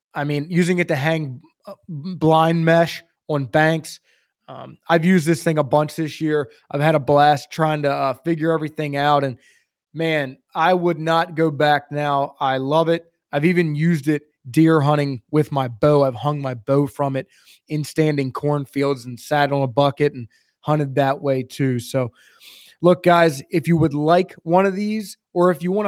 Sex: male